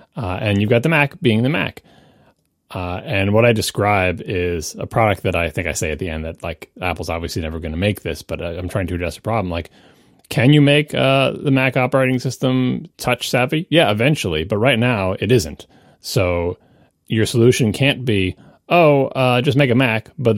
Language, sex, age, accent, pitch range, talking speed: English, male, 30-49, American, 90-125 Hz, 210 wpm